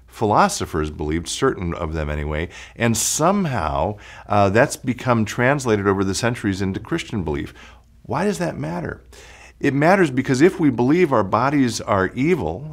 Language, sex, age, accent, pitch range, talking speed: English, male, 50-69, American, 105-140 Hz, 150 wpm